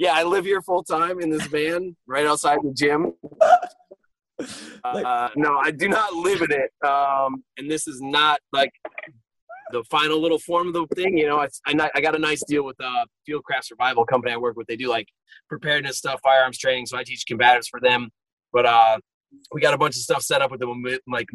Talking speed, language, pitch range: 215 wpm, English, 125-155 Hz